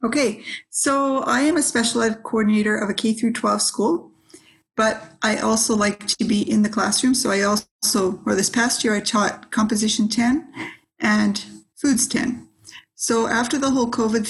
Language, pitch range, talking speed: English, 205-235 Hz, 175 wpm